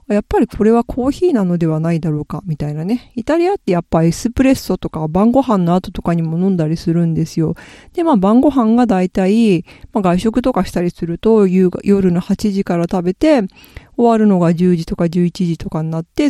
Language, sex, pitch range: Japanese, female, 180-250 Hz